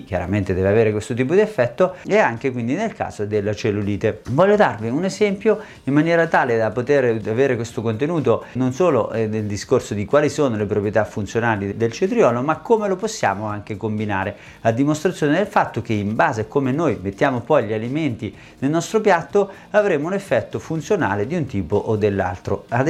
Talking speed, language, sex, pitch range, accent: 185 wpm, Italian, male, 105-150 Hz, native